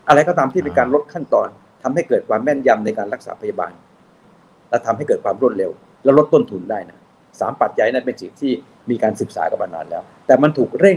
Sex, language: male, Thai